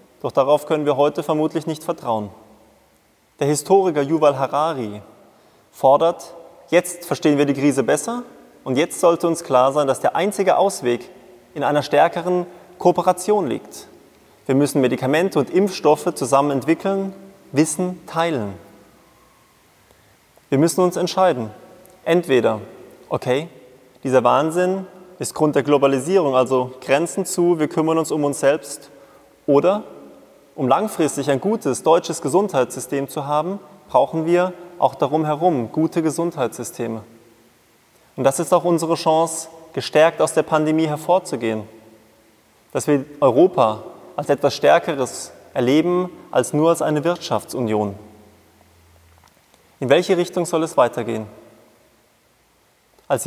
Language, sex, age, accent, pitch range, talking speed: German, male, 20-39, German, 130-175 Hz, 125 wpm